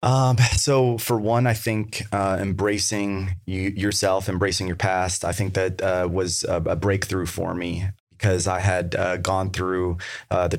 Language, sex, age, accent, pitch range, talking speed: English, male, 30-49, American, 90-100 Hz, 170 wpm